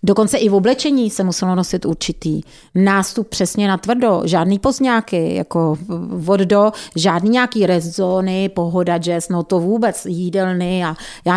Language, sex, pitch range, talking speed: Czech, female, 175-215 Hz, 145 wpm